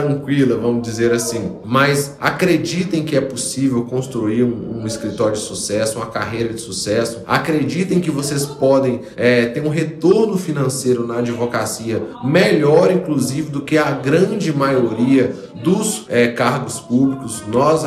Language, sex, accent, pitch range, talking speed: Portuguese, male, Brazilian, 125-160 Hz, 135 wpm